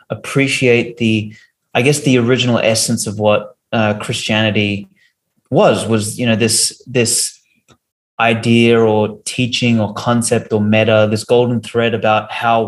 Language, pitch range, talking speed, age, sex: English, 110-135 Hz, 135 wpm, 30-49, male